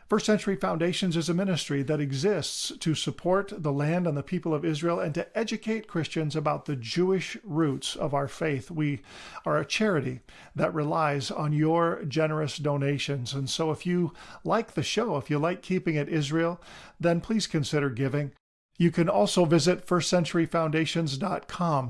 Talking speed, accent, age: 165 wpm, American, 50-69